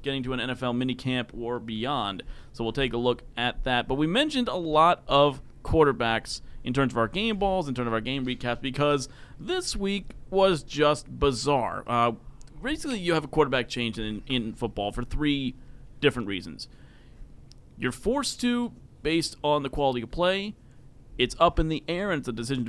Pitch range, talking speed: 120-155 Hz, 190 wpm